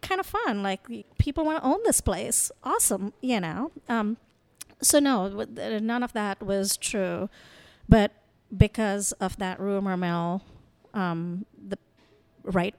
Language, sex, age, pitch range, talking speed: English, female, 30-49, 180-230 Hz, 140 wpm